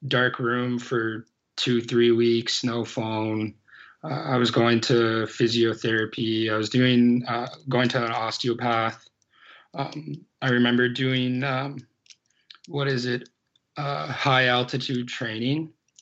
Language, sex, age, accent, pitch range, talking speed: English, male, 20-39, American, 115-130 Hz, 125 wpm